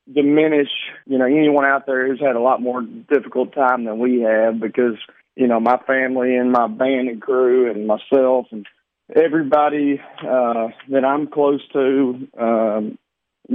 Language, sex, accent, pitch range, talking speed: English, male, American, 125-145 Hz, 160 wpm